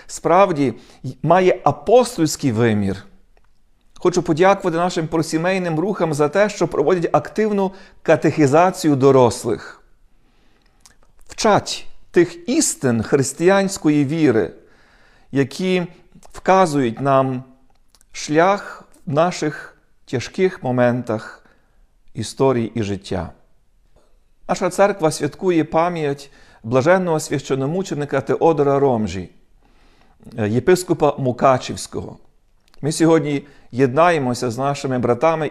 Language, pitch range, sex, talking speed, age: Ukrainian, 130-175 Hz, male, 80 wpm, 40-59